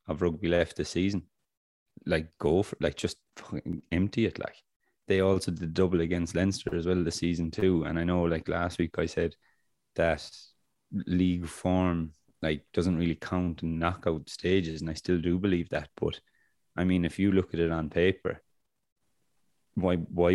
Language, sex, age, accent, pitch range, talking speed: English, male, 20-39, Irish, 80-90 Hz, 175 wpm